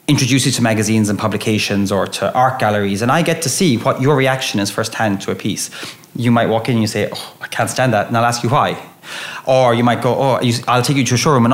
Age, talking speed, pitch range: 30-49, 270 wpm, 110-130 Hz